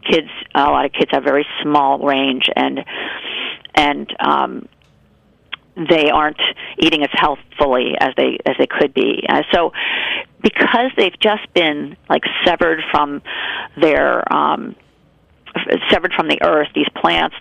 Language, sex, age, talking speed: English, female, 40-59, 140 wpm